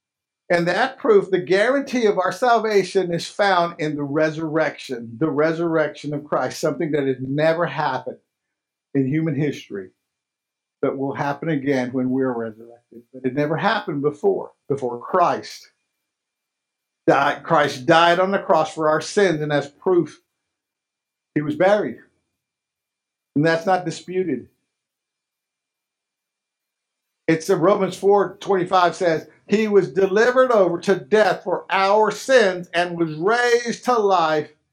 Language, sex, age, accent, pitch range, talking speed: English, male, 50-69, American, 145-195 Hz, 140 wpm